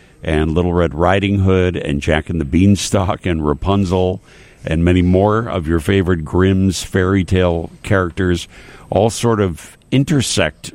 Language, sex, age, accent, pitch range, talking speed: English, male, 60-79, American, 80-100 Hz, 145 wpm